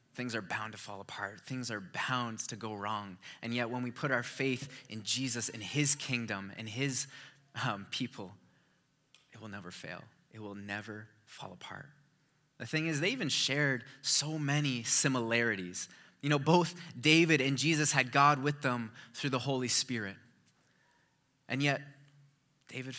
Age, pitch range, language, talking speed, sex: 20-39, 115-145 Hz, English, 165 wpm, male